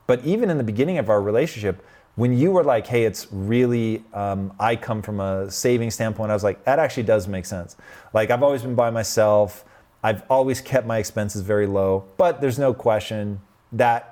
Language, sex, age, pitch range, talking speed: English, male, 30-49, 105-130 Hz, 205 wpm